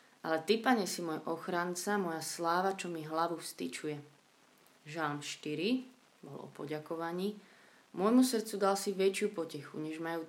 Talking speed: 145 wpm